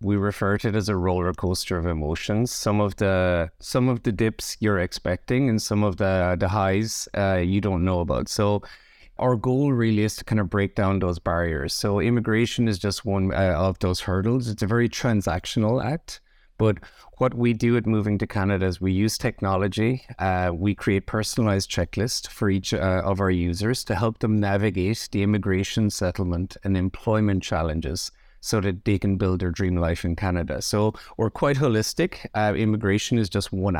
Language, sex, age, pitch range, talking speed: English, male, 30-49, 95-110 Hz, 190 wpm